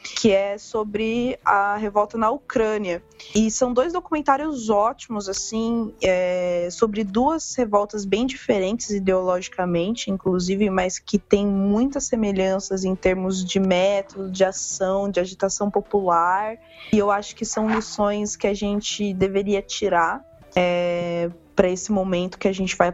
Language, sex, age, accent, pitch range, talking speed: Portuguese, female, 20-39, Brazilian, 190-215 Hz, 135 wpm